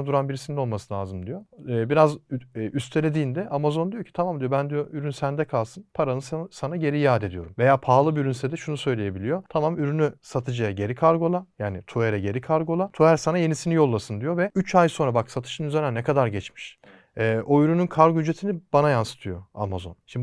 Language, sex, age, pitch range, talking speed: Turkish, male, 40-59, 120-165 Hz, 180 wpm